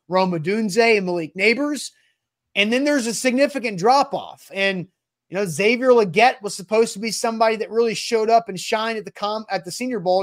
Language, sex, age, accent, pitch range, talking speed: English, male, 30-49, American, 195-240 Hz, 200 wpm